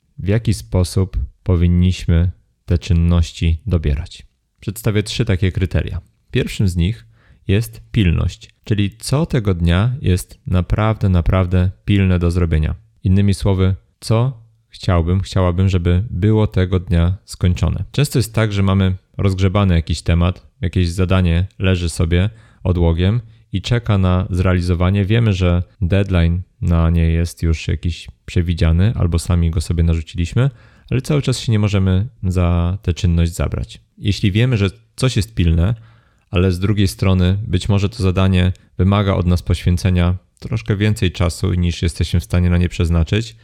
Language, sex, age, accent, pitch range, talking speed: Polish, male, 30-49, native, 90-105 Hz, 145 wpm